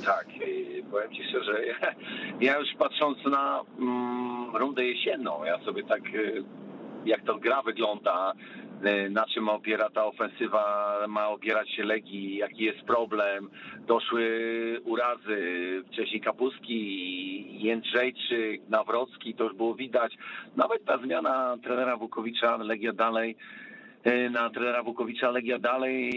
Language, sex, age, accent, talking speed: Polish, male, 50-69, native, 120 wpm